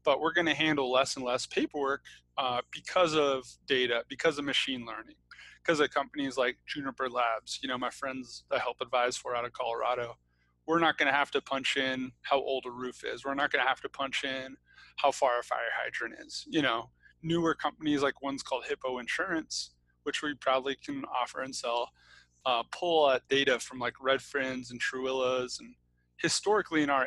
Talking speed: 200 wpm